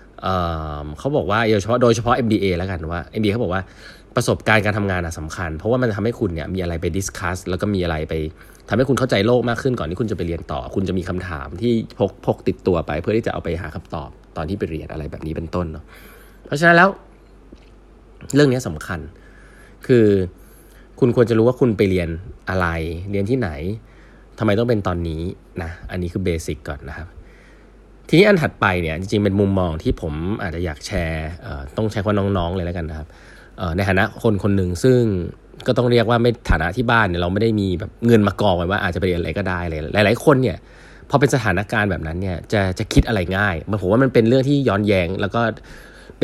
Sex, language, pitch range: male, Thai, 85-115 Hz